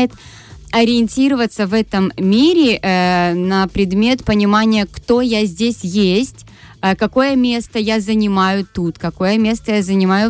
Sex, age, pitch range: female, 20-39, 185-235 Hz